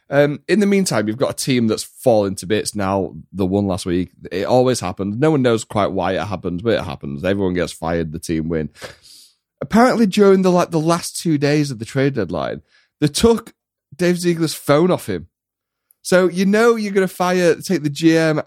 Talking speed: 210 wpm